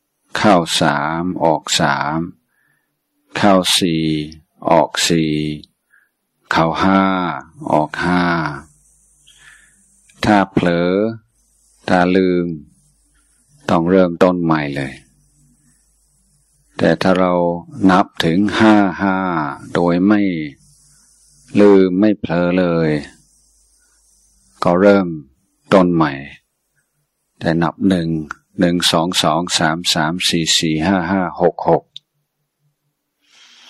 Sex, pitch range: male, 85-105 Hz